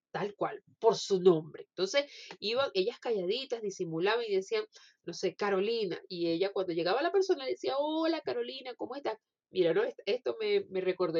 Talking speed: 170 wpm